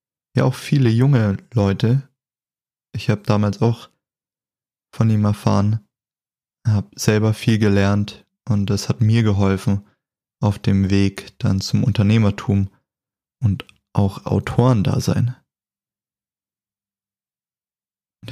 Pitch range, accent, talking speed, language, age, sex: 100-115 Hz, German, 110 wpm, German, 20-39, male